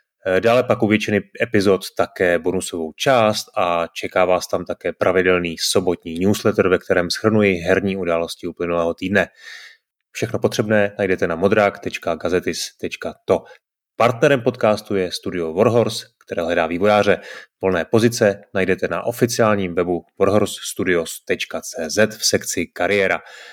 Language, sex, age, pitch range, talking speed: Czech, male, 30-49, 95-120 Hz, 115 wpm